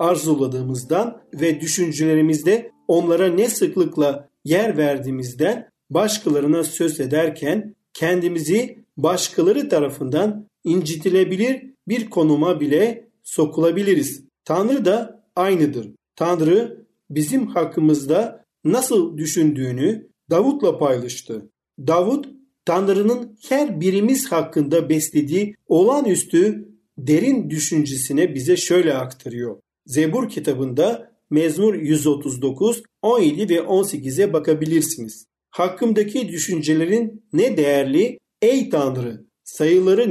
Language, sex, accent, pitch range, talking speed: Turkish, male, native, 150-215 Hz, 85 wpm